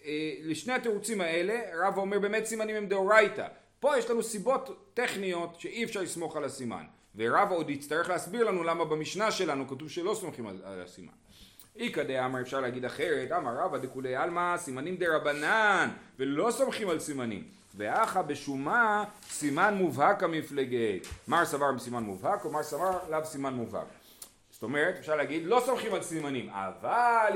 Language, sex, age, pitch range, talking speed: Hebrew, male, 40-59, 145-210 Hz, 160 wpm